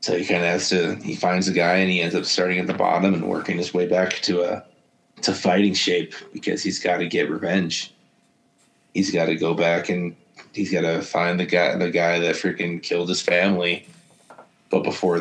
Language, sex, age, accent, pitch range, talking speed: English, male, 30-49, American, 85-95 Hz, 215 wpm